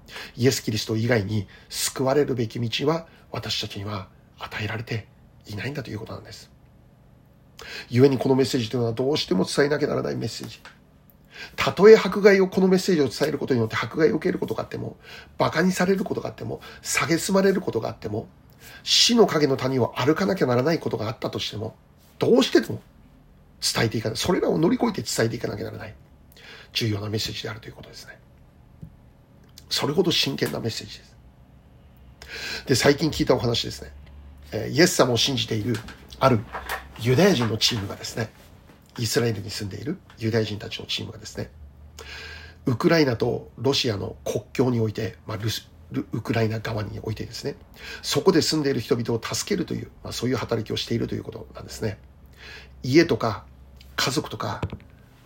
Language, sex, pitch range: Japanese, male, 105-135 Hz